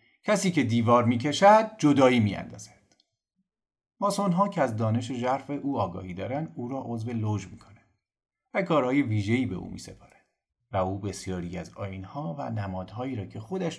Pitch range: 105-145 Hz